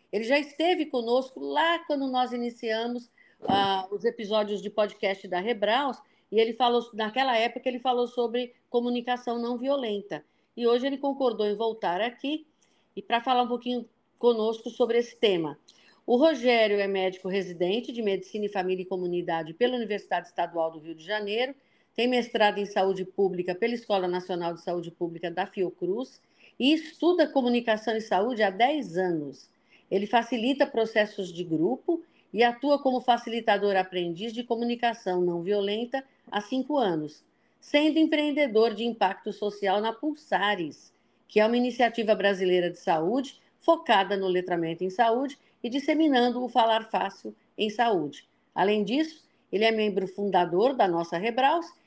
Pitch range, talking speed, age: 195-255 Hz, 150 wpm, 50-69